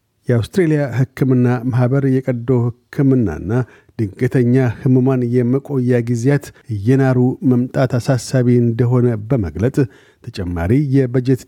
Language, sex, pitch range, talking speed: Amharic, male, 120-135 Hz, 85 wpm